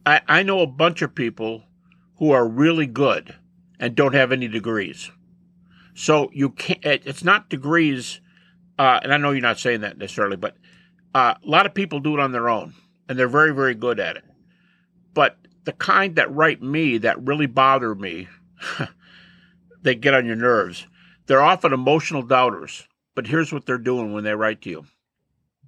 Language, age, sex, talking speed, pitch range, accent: English, 50-69, male, 180 wpm, 130-180 Hz, American